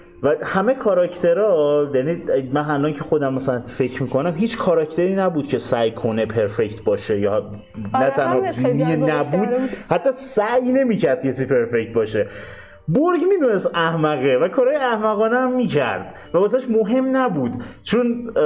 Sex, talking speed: male, 135 wpm